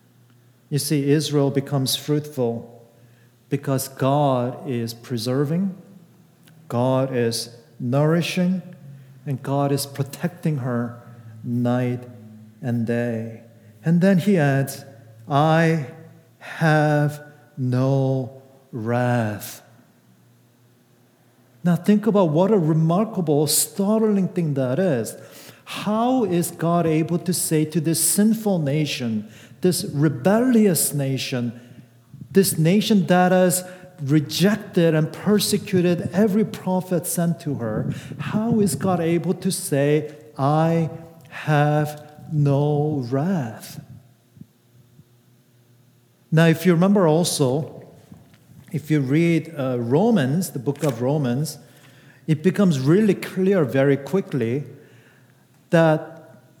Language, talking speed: English, 100 wpm